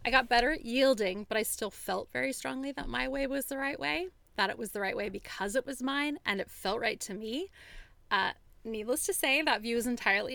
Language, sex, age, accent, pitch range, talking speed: English, female, 20-39, American, 195-255 Hz, 245 wpm